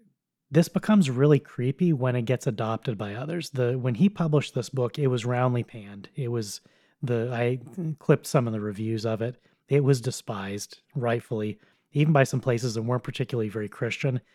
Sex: male